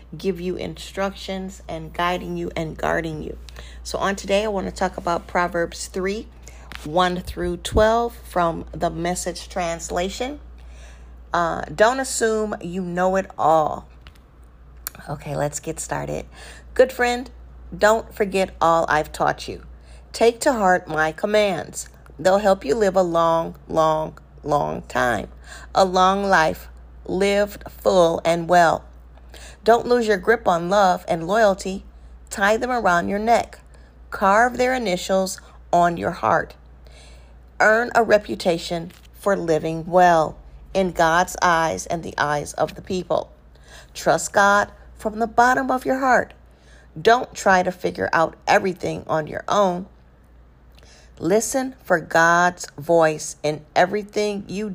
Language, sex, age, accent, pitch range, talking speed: English, female, 50-69, American, 145-200 Hz, 135 wpm